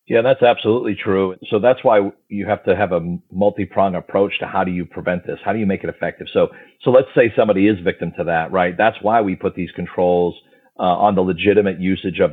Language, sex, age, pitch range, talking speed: English, male, 40-59, 90-105 Hz, 235 wpm